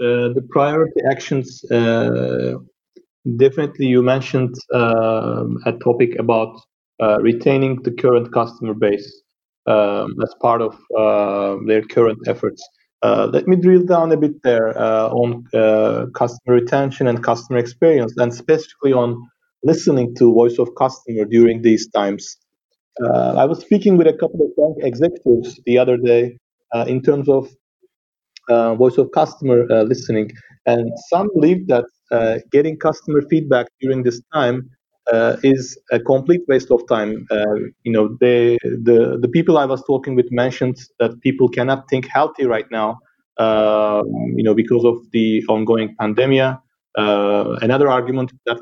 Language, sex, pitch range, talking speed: English, male, 110-135 Hz, 155 wpm